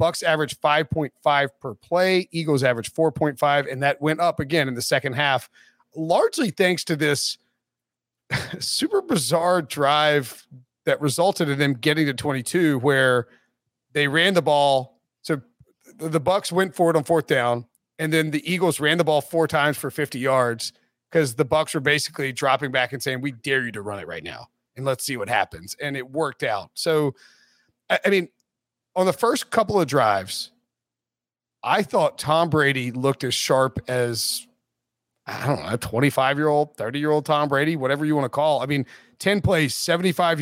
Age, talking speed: 30-49, 175 wpm